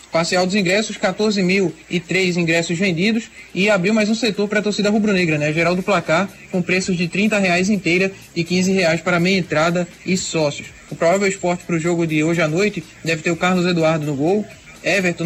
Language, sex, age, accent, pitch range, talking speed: Portuguese, male, 20-39, Brazilian, 165-195 Hz, 200 wpm